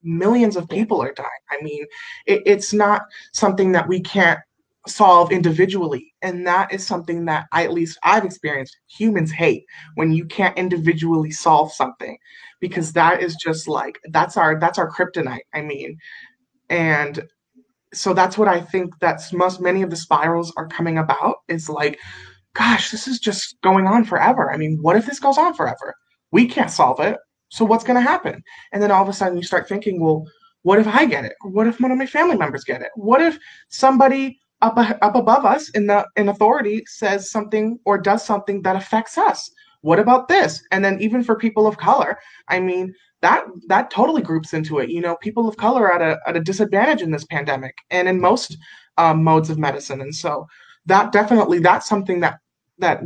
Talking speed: 200 wpm